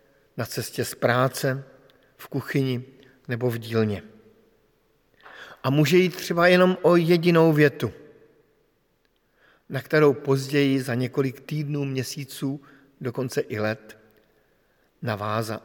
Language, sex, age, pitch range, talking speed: Slovak, male, 50-69, 130-155 Hz, 105 wpm